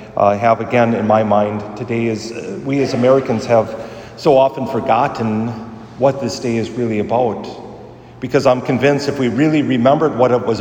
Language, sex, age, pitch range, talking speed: English, male, 40-59, 105-125 Hz, 180 wpm